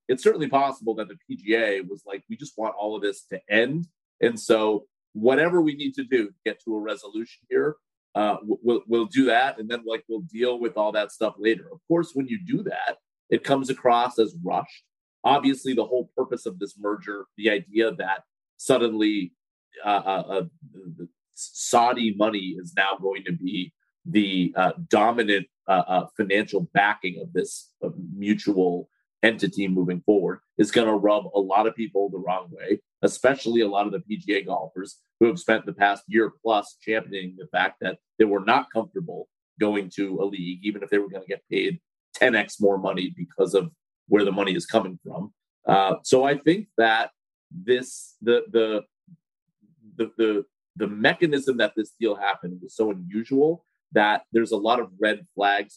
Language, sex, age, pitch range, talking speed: English, male, 30-49, 100-135 Hz, 185 wpm